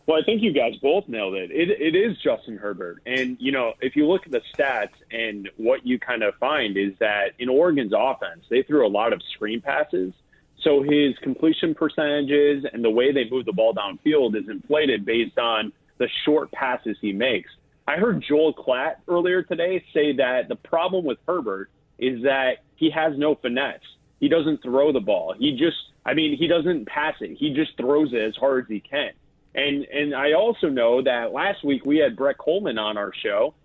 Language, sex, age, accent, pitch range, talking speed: English, male, 30-49, American, 135-180 Hz, 205 wpm